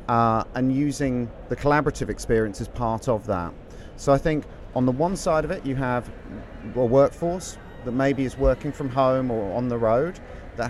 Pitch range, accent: 110-135 Hz, British